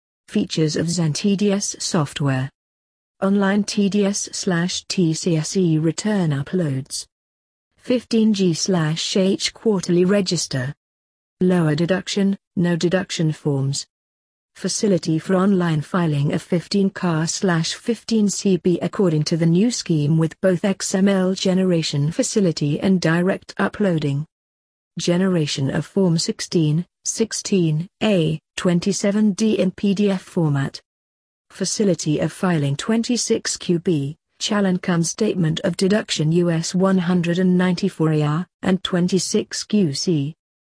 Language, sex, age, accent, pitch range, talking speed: English, female, 40-59, British, 155-195 Hz, 85 wpm